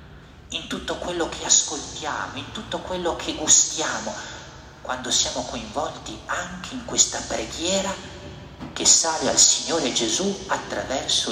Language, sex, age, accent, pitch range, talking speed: Italian, male, 50-69, native, 85-135 Hz, 120 wpm